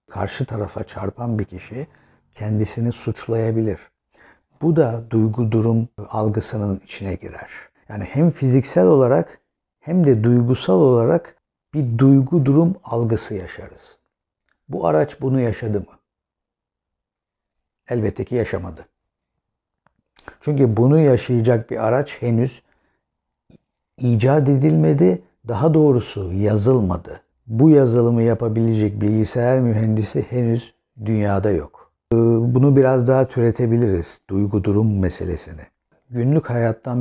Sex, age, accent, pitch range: male, 60-79, native, 100-130 Hz